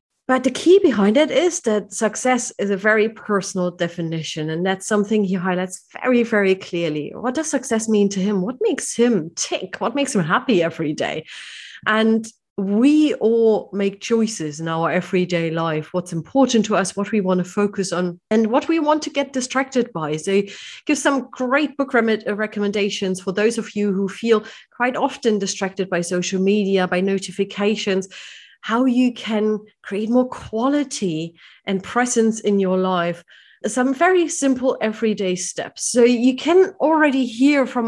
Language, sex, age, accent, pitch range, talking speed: English, female, 30-49, German, 195-255 Hz, 170 wpm